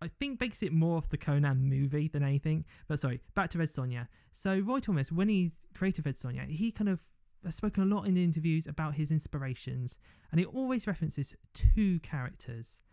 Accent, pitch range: British, 135-175 Hz